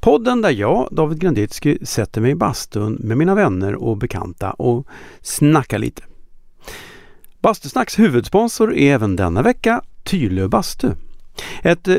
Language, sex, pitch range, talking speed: Swedish, male, 110-185 Hz, 130 wpm